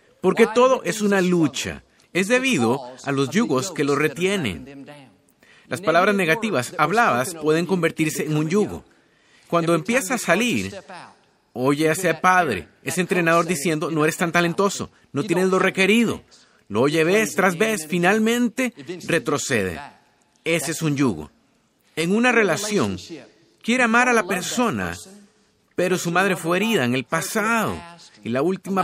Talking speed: 150 wpm